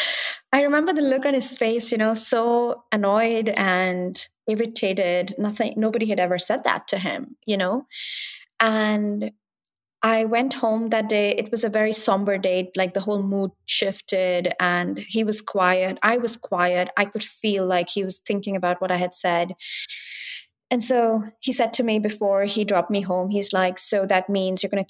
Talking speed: 190 wpm